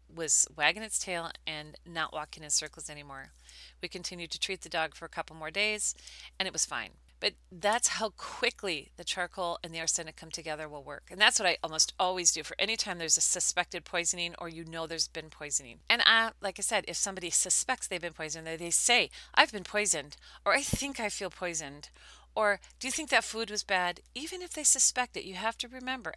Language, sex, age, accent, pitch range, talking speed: English, female, 40-59, American, 165-205 Hz, 220 wpm